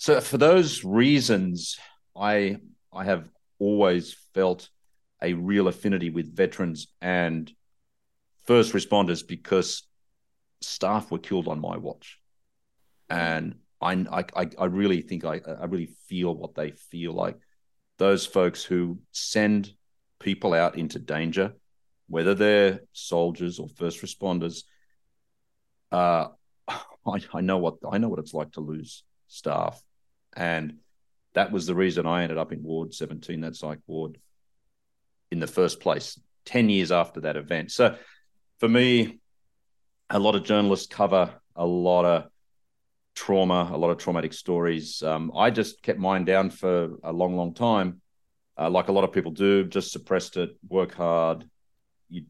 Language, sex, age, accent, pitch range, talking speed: English, male, 40-59, Australian, 85-95 Hz, 150 wpm